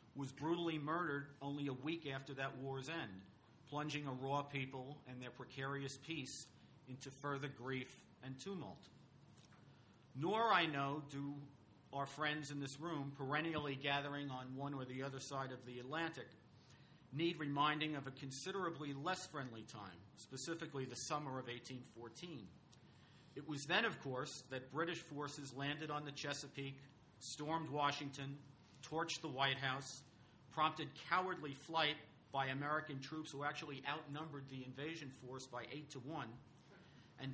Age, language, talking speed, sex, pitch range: 50-69, English, 145 wpm, male, 130-155 Hz